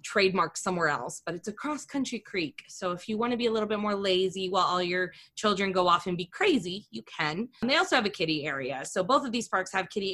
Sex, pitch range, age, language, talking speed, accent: female, 175-225 Hz, 20-39, English, 260 wpm, American